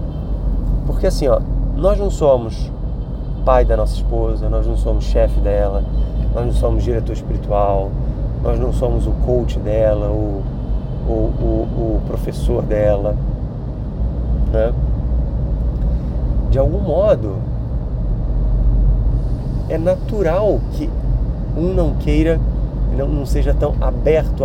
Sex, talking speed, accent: male, 105 wpm, Brazilian